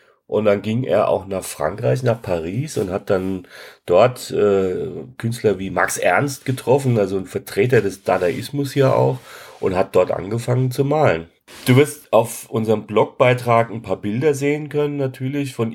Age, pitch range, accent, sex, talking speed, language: 40-59, 110-135 Hz, German, male, 170 wpm, German